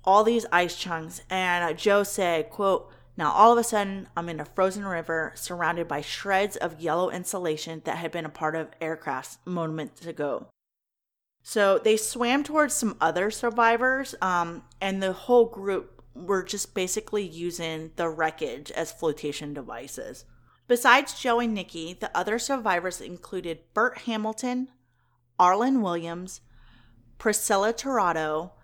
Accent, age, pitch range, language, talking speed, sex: American, 30-49, 165-215 Hz, English, 145 wpm, female